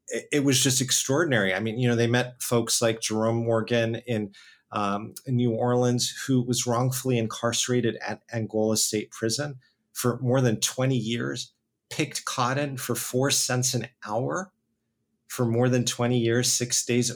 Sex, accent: male, American